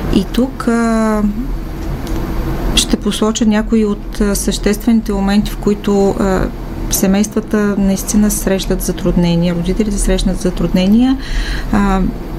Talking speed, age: 100 wpm, 30-49